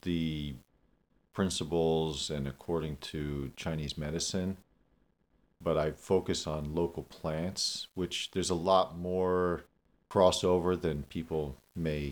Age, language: 40-59, English